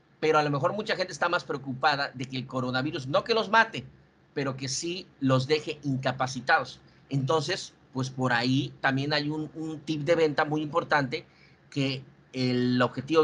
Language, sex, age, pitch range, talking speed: Spanish, male, 50-69, 135-180 Hz, 175 wpm